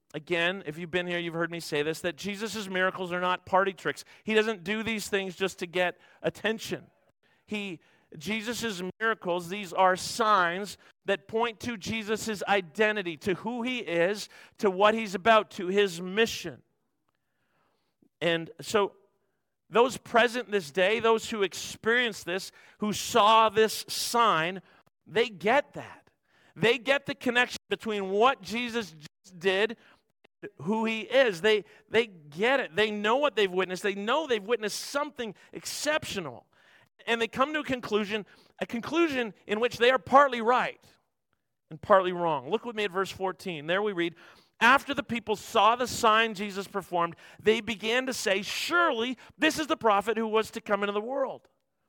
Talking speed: 165 wpm